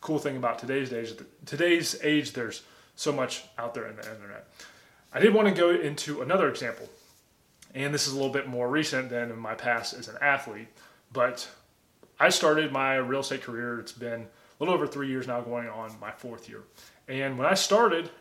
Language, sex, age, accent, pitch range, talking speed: English, male, 20-39, American, 125-155 Hz, 200 wpm